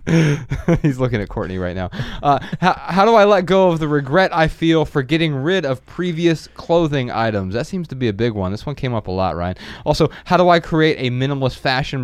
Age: 20-39